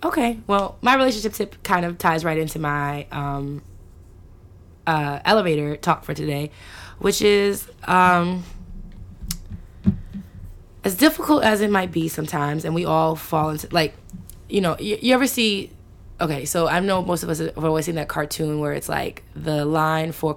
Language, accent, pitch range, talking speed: English, American, 145-175 Hz, 170 wpm